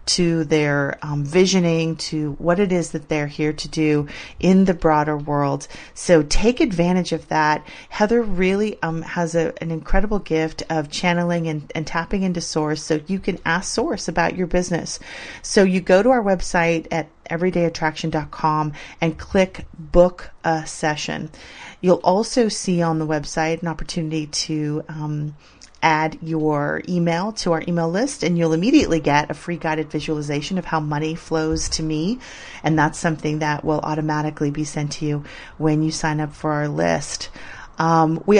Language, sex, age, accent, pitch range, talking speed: English, female, 30-49, American, 155-185 Hz, 170 wpm